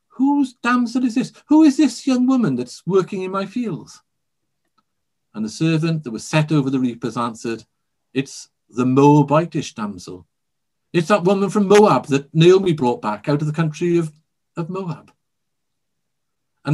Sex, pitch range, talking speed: male, 140-200 Hz, 160 wpm